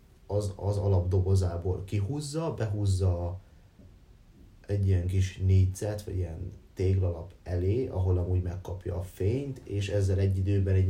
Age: 30-49